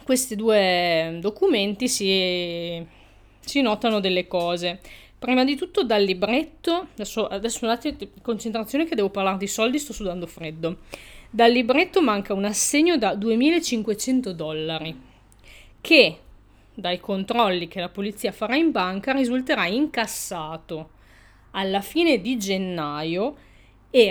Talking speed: 125 wpm